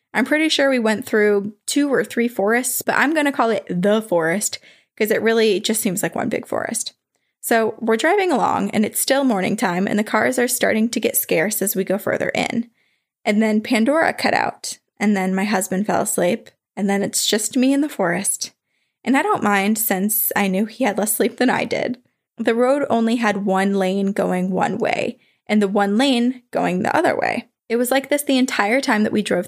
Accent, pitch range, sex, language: American, 200-245 Hz, female, English